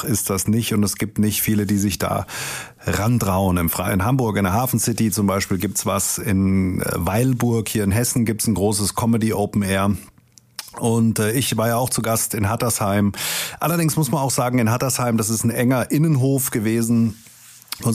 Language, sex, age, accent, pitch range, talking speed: German, male, 30-49, German, 105-130 Hz, 185 wpm